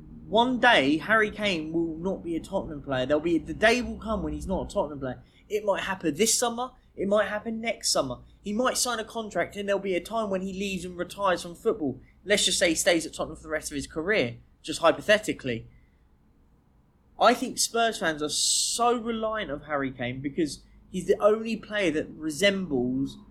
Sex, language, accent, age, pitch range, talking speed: male, English, British, 20-39, 155-215 Hz, 210 wpm